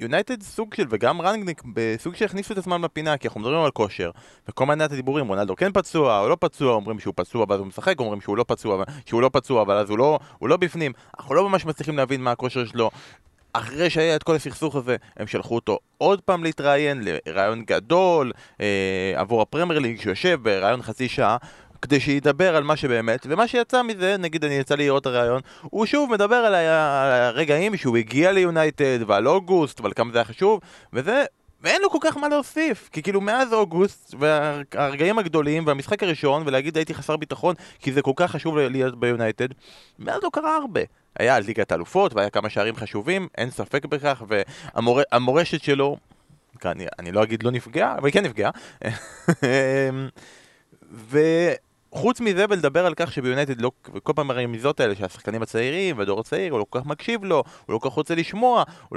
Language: Hebrew